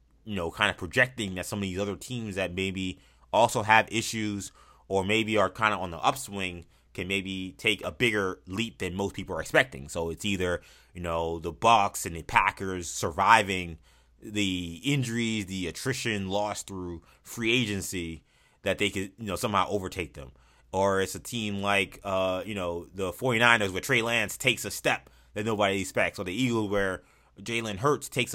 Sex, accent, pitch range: male, American, 90-115 Hz